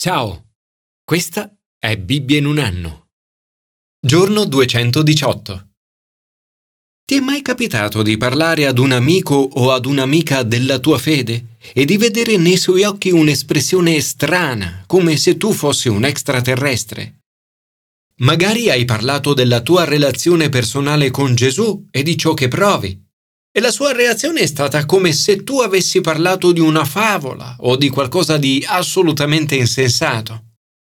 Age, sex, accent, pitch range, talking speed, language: 40-59, male, native, 120-180 Hz, 140 wpm, Italian